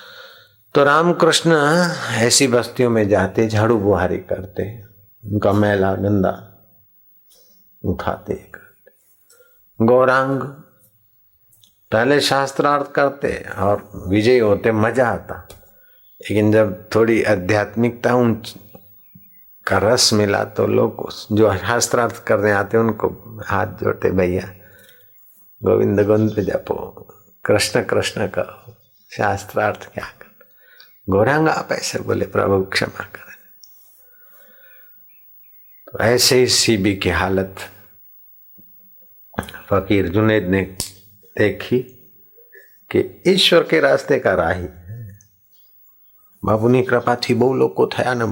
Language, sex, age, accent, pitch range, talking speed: Hindi, male, 60-79, native, 100-155 Hz, 100 wpm